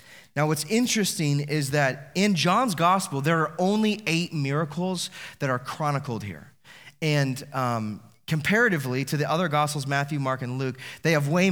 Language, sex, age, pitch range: English, male, 30-49, 140-175 Hz